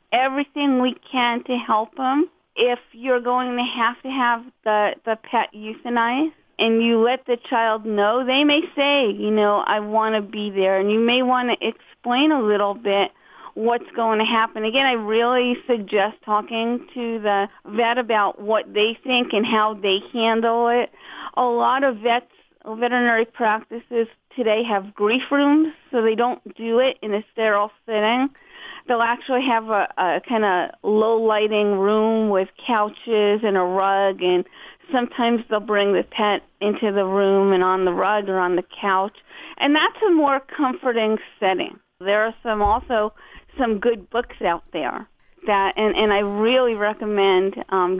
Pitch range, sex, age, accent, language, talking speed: 205-245 Hz, female, 40-59, American, English, 170 wpm